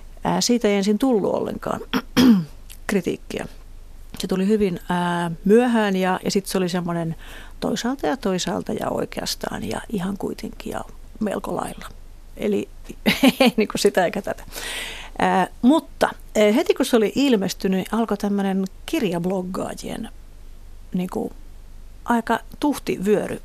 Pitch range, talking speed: 185-235 Hz, 115 wpm